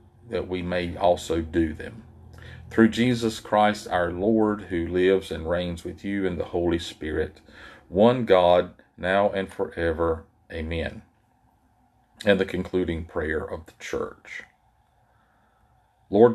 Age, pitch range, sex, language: 40-59, 85-100 Hz, male, English